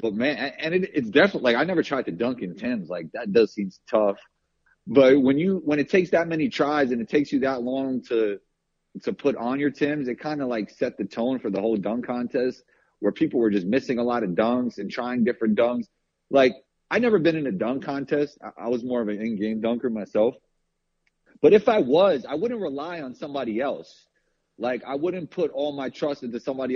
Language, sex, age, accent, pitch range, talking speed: English, male, 30-49, American, 115-150 Hz, 230 wpm